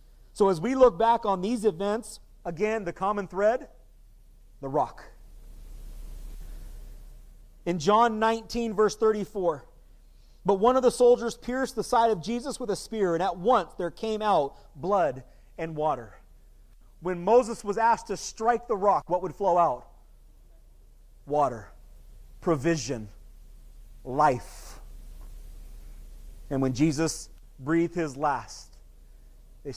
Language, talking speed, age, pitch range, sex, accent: English, 125 wpm, 40-59, 120-195 Hz, male, American